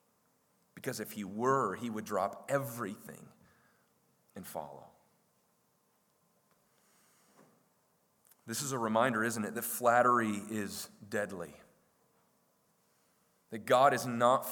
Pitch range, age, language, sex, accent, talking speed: 125-185 Hz, 40-59, English, male, American, 100 wpm